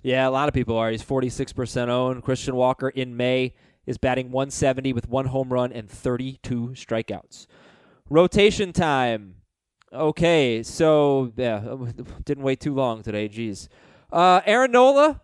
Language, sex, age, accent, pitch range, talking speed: English, male, 20-39, American, 125-175 Hz, 140 wpm